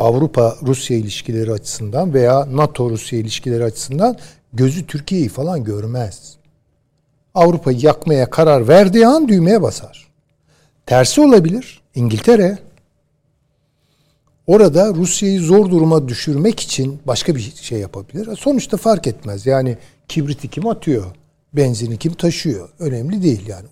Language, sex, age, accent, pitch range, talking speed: Turkish, male, 60-79, native, 125-170 Hz, 110 wpm